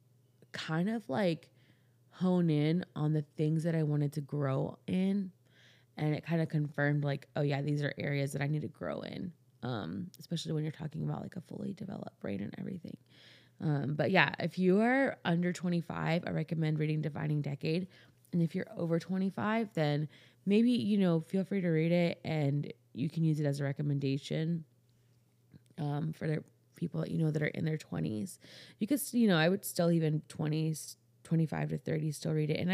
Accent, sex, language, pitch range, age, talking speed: American, female, English, 140-175 Hz, 20-39, 195 wpm